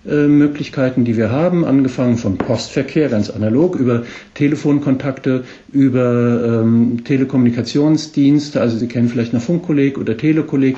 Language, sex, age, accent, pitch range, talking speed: German, male, 50-69, German, 120-145 Hz, 120 wpm